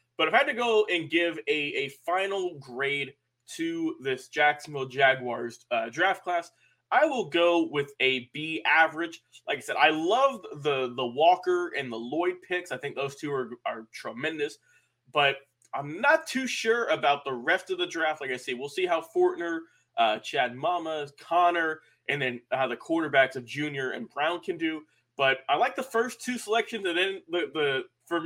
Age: 20-39